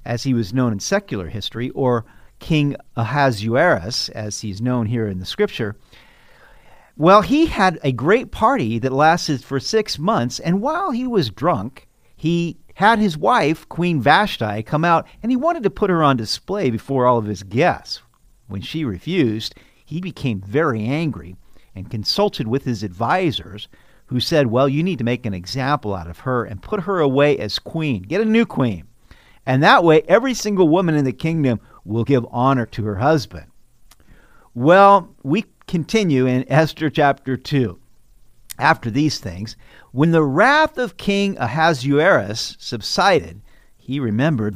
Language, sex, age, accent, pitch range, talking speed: English, male, 50-69, American, 115-165 Hz, 165 wpm